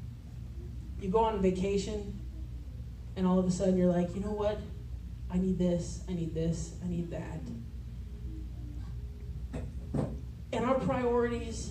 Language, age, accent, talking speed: English, 30-49, American, 135 wpm